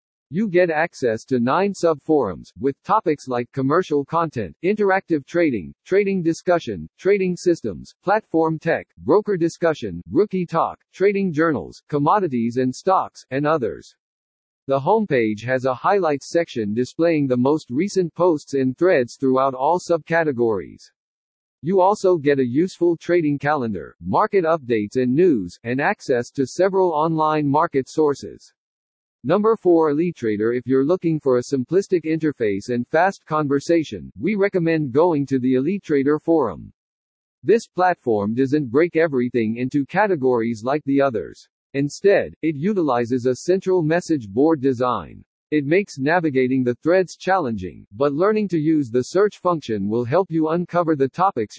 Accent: American